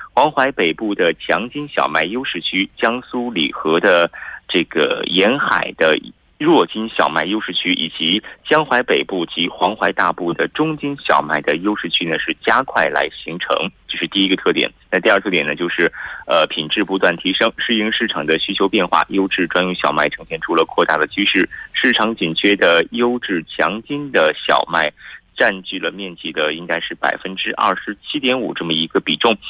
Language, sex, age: Korean, male, 30-49